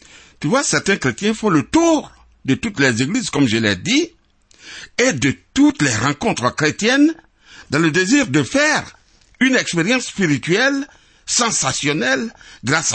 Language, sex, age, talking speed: French, male, 60-79, 145 wpm